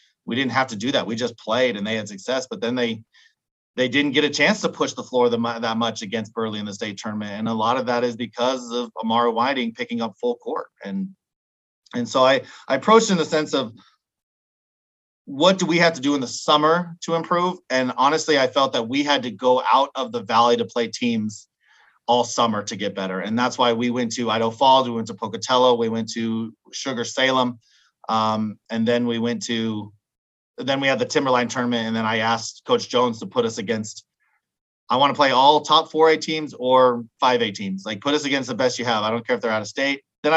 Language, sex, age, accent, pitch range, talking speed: English, male, 30-49, American, 115-150 Hz, 235 wpm